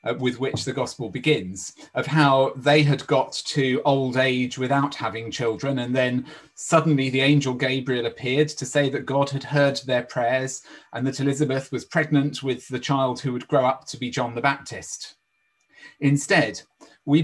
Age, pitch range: 30-49, 130-155 Hz